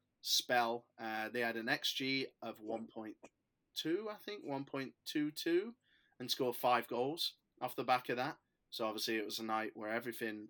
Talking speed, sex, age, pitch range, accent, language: 160 wpm, male, 20-39, 115-135 Hz, British, English